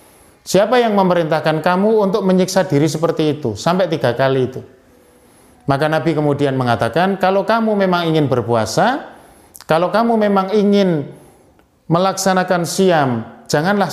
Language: Indonesian